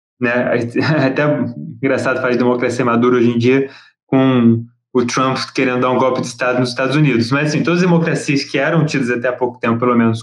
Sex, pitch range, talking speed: male, 125-160 Hz, 200 wpm